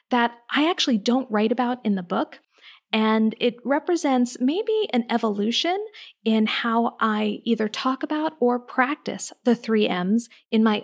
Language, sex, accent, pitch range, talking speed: English, female, American, 210-265 Hz, 155 wpm